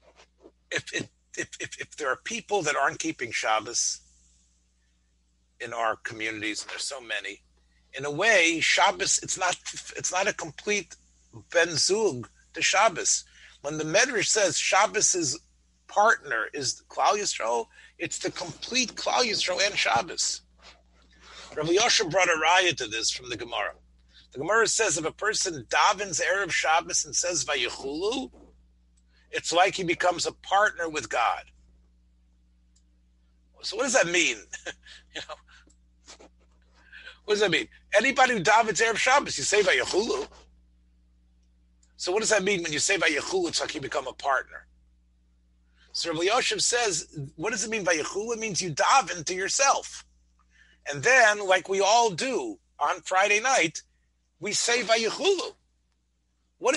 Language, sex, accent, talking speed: English, male, American, 150 wpm